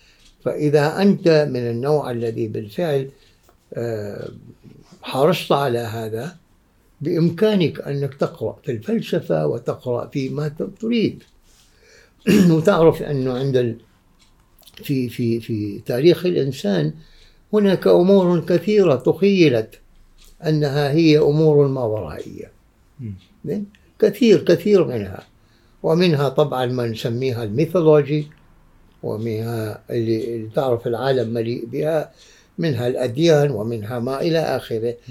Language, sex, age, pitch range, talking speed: Arabic, male, 60-79, 115-160 Hz, 90 wpm